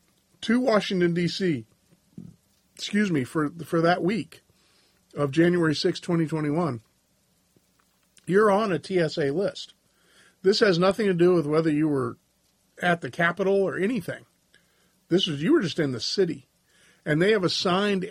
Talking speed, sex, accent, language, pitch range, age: 145 wpm, male, American, English, 135-185 Hz, 50-69